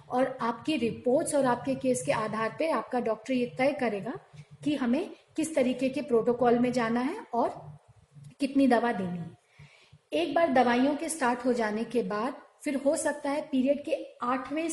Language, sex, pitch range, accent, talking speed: Hindi, female, 235-280 Hz, native, 180 wpm